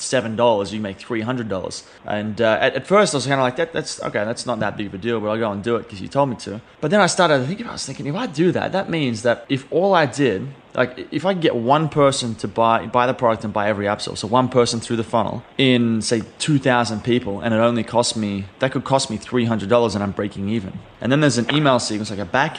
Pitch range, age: 110-130 Hz, 20-39